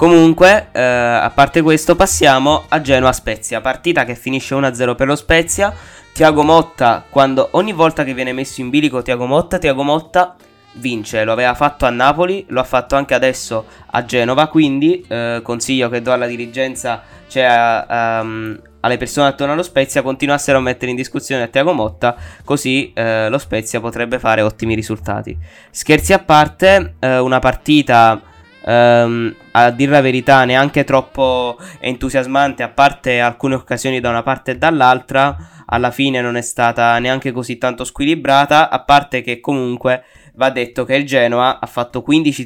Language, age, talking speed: Italian, 20-39, 160 wpm